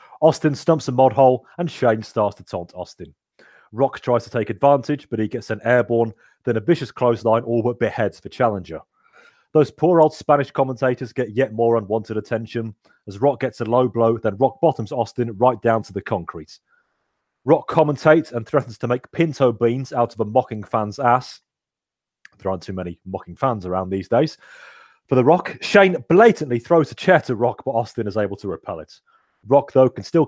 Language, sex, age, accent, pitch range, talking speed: English, male, 30-49, British, 110-135 Hz, 195 wpm